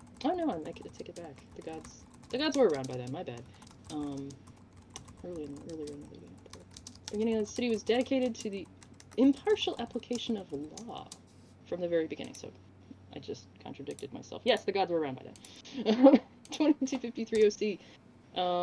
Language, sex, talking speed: English, female, 170 wpm